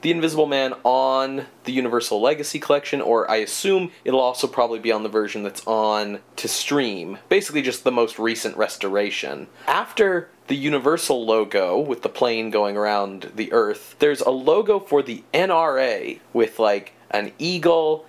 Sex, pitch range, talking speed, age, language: male, 115-165 Hz, 165 wpm, 30-49, English